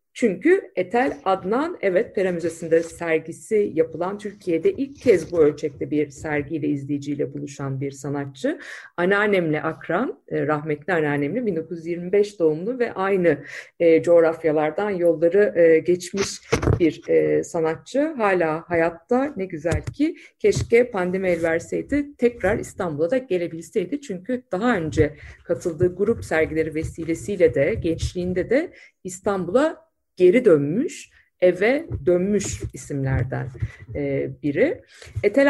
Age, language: 50-69, Turkish